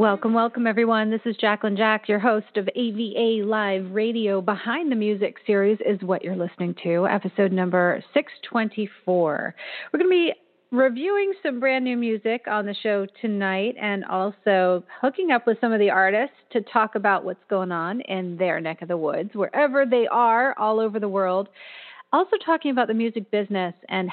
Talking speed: 180 wpm